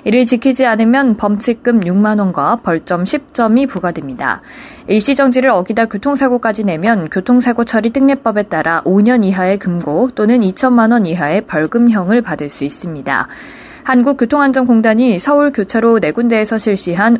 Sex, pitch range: female, 190-250 Hz